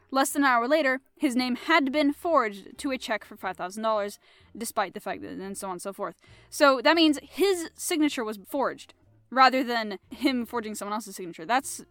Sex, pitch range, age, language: female, 205-265 Hz, 10-29, English